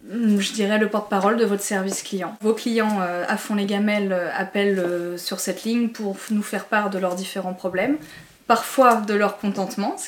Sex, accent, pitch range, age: female, French, 190-215 Hz, 20-39